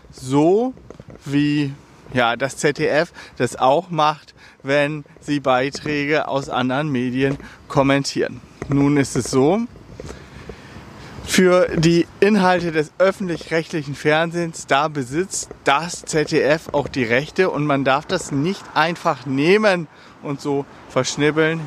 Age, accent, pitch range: 40-59, German, 135-165 Hz